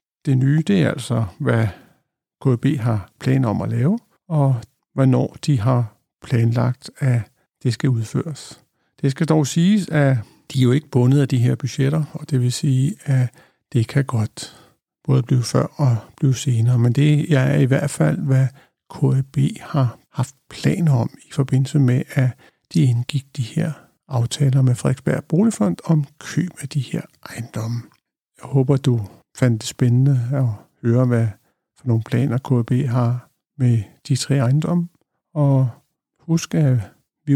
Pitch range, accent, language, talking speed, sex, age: 125-155 Hz, native, Danish, 160 wpm, male, 60-79